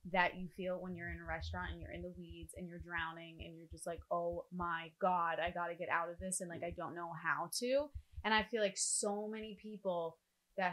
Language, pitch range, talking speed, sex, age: English, 170-200 Hz, 250 wpm, female, 20-39